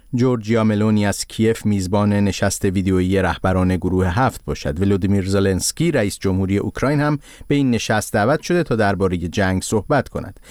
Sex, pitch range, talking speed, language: male, 95-120 Hz, 155 wpm, Persian